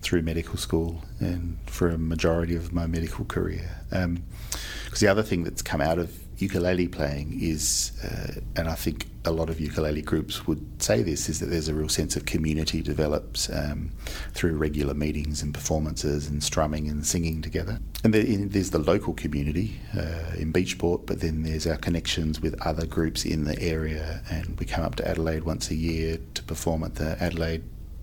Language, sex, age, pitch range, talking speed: English, male, 40-59, 80-90 Hz, 190 wpm